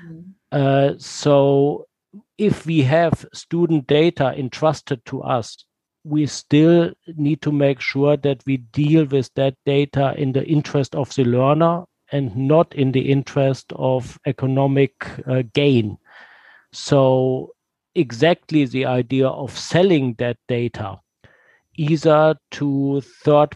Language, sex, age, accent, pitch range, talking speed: English, male, 50-69, German, 130-150 Hz, 120 wpm